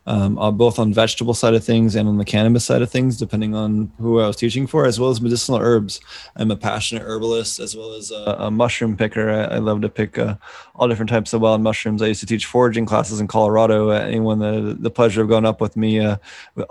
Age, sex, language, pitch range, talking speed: 20-39, male, English, 105-115 Hz, 245 wpm